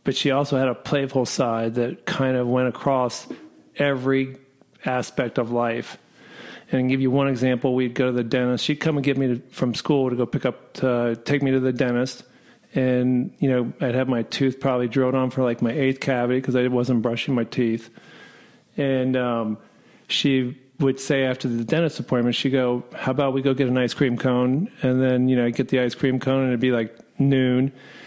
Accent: American